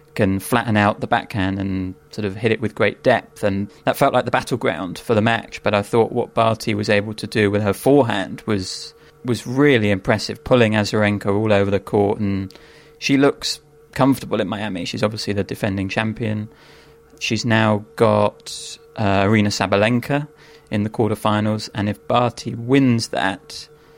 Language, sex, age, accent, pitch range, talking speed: English, male, 30-49, British, 100-125 Hz, 175 wpm